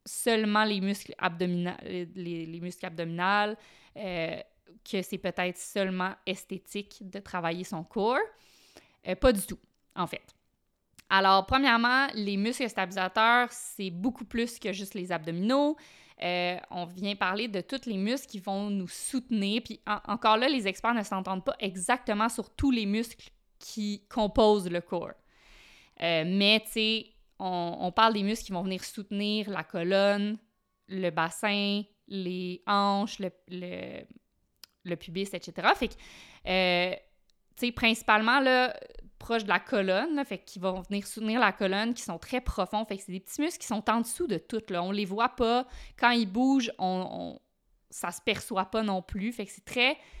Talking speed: 170 wpm